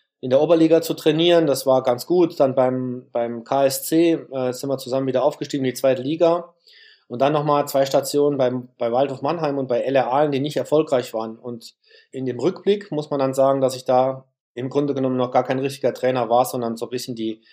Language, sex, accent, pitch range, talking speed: German, male, German, 125-150 Hz, 220 wpm